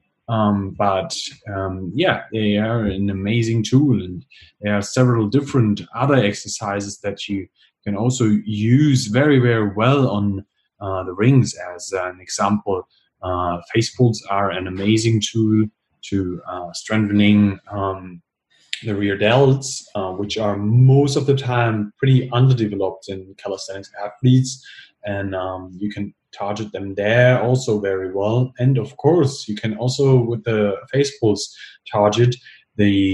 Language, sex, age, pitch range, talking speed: English, male, 30-49, 100-130 Hz, 145 wpm